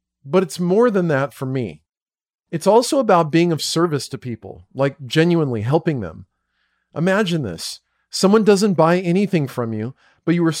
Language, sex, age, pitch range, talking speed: English, male, 40-59, 135-180 Hz, 170 wpm